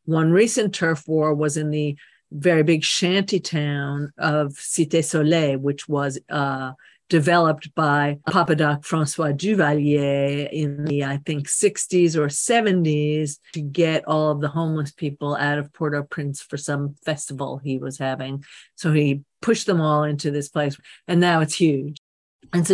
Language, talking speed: English, 155 wpm